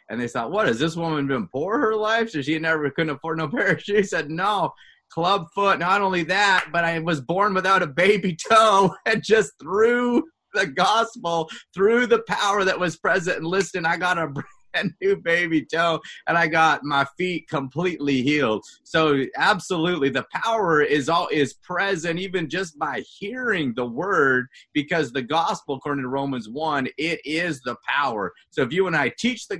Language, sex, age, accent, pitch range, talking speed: English, male, 30-49, American, 150-185 Hz, 185 wpm